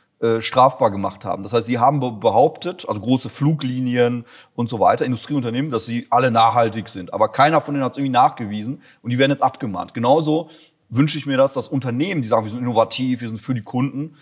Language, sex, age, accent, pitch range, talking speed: German, male, 30-49, German, 120-145 Hz, 220 wpm